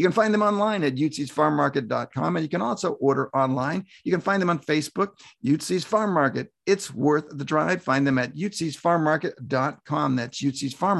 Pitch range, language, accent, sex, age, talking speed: 140-195 Hz, English, American, male, 50-69, 180 wpm